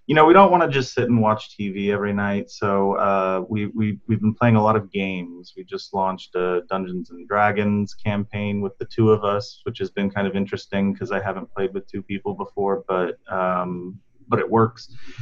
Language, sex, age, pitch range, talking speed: English, male, 30-49, 95-115 Hz, 220 wpm